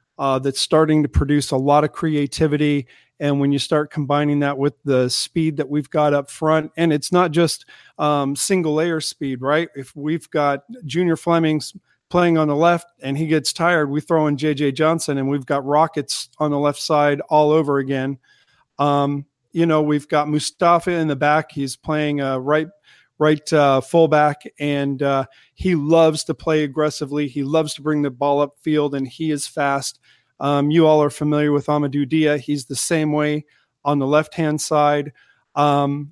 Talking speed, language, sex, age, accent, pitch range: 190 wpm, English, male, 40-59, American, 145-160 Hz